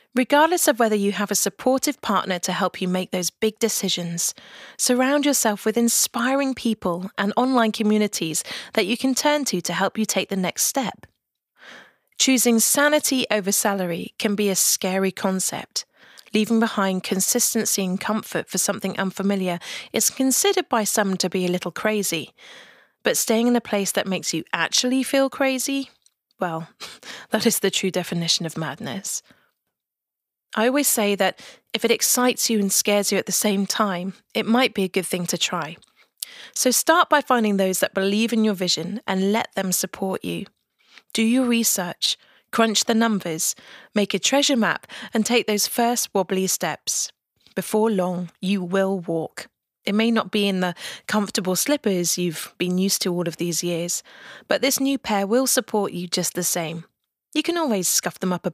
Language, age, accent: English, 30-49, British